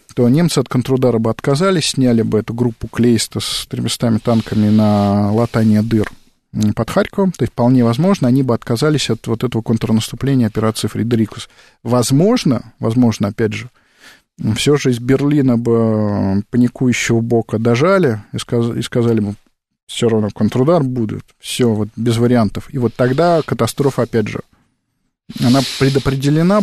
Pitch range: 115-140 Hz